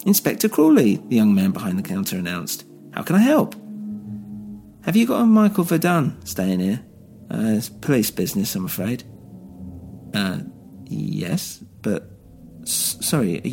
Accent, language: British, English